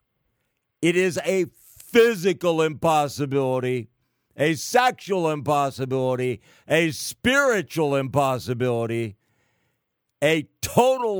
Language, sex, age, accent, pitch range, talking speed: English, male, 60-79, American, 125-205 Hz, 70 wpm